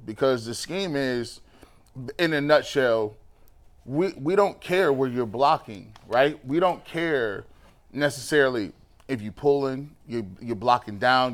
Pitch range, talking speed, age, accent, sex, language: 120-145 Hz, 140 wpm, 30-49, American, male, English